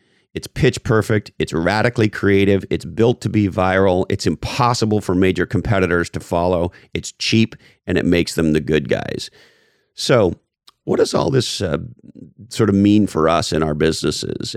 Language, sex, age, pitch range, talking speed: English, male, 40-59, 90-110 Hz, 170 wpm